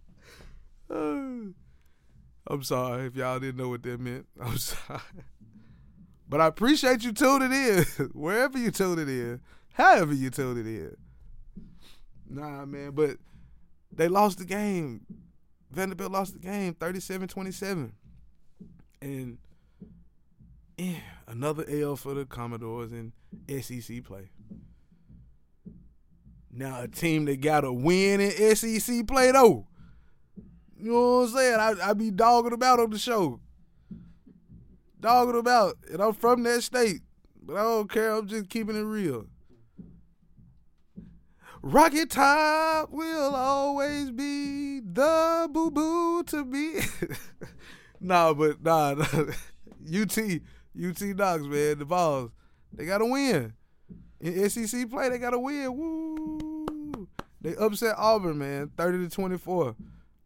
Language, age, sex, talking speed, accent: English, 20-39, male, 125 wpm, American